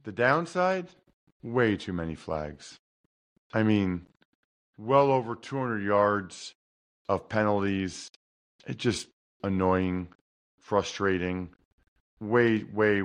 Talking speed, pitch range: 90 wpm, 100-140 Hz